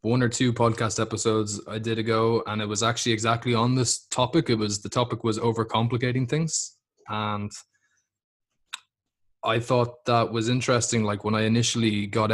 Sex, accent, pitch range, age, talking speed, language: male, Irish, 110-120 Hz, 20-39, 165 wpm, English